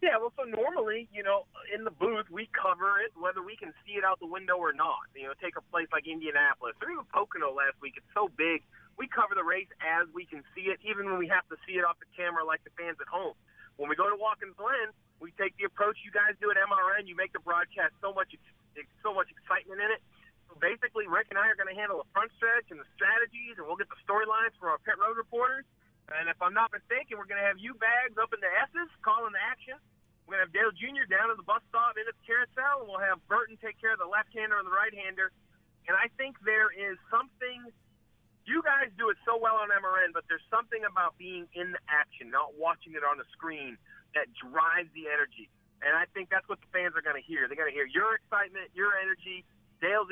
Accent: American